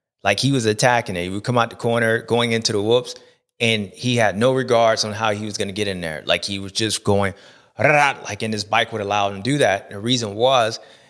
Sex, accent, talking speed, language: male, American, 255 wpm, English